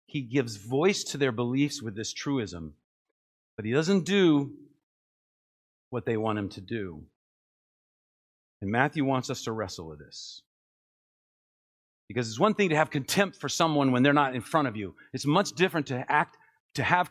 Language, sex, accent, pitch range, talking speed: English, male, American, 110-155 Hz, 175 wpm